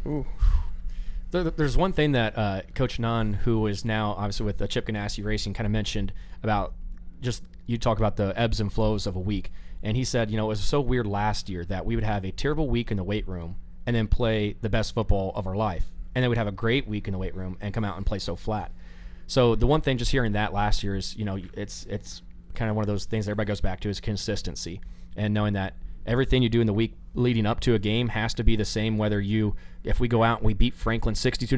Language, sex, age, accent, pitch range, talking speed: English, male, 20-39, American, 95-115 Hz, 260 wpm